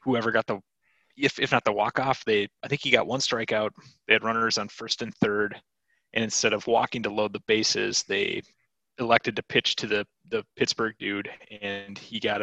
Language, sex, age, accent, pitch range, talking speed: English, male, 30-49, American, 105-120 Hz, 205 wpm